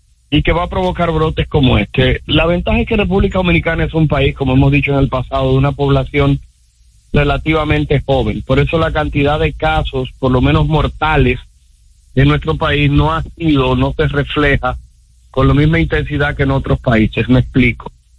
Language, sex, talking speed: Spanish, male, 190 wpm